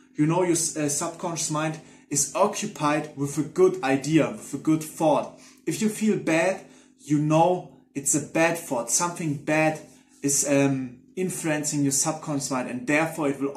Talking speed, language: 170 wpm, English